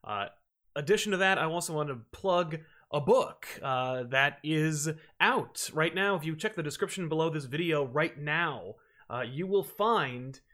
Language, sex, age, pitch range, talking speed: English, male, 30-49, 140-195 Hz, 175 wpm